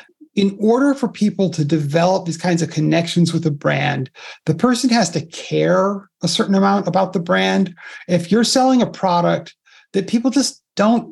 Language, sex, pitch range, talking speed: English, male, 165-225 Hz, 180 wpm